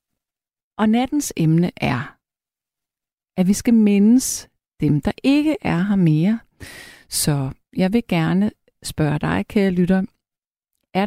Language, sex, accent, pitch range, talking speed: Danish, female, native, 165-225 Hz, 125 wpm